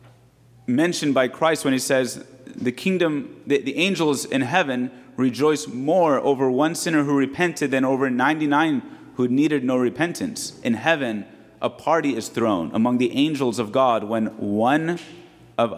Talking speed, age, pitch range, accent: 155 wpm, 30-49, 120-140 Hz, American